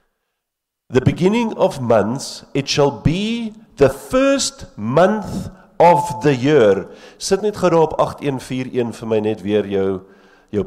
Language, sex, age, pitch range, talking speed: English, male, 50-69, 100-155 Hz, 130 wpm